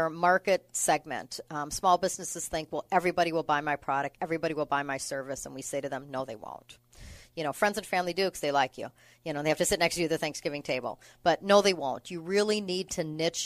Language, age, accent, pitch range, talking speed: English, 40-59, American, 145-180 Hz, 255 wpm